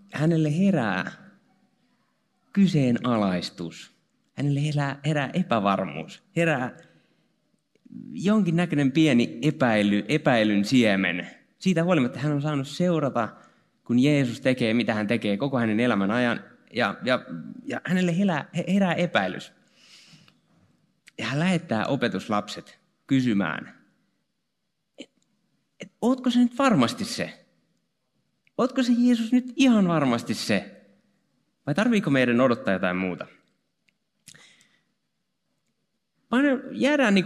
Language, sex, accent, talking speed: Finnish, male, native, 100 wpm